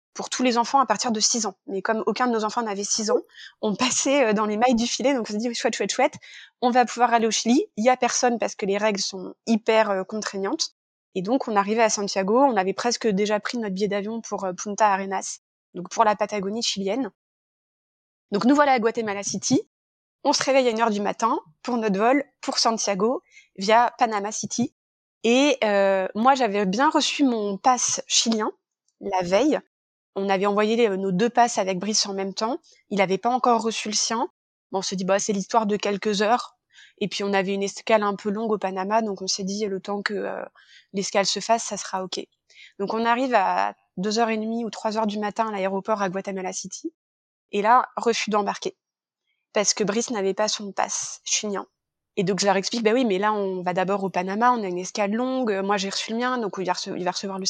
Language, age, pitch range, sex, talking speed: French, 20-39, 200-240 Hz, female, 225 wpm